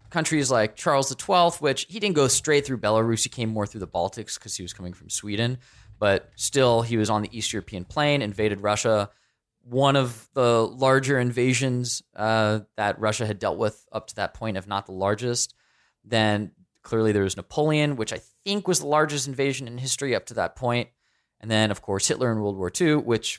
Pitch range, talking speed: 105-135 Hz, 210 wpm